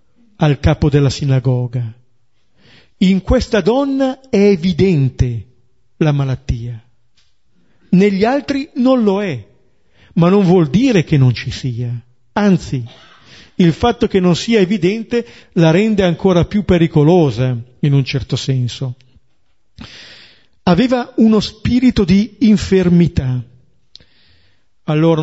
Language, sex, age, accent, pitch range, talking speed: Italian, male, 50-69, native, 130-195 Hz, 110 wpm